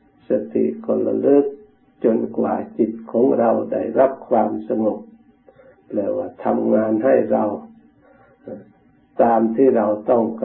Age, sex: 60-79, male